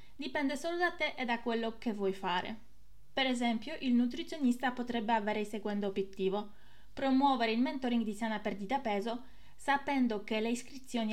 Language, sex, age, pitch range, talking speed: Italian, female, 20-39, 215-270 Hz, 160 wpm